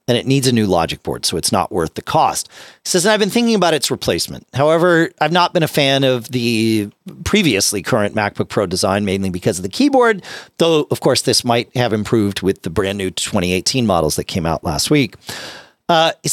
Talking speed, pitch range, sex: 220 wpm, 105-160 Hz, male